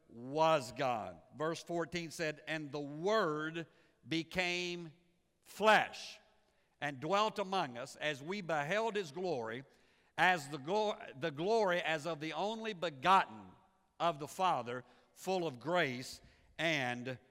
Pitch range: 145-190 Hz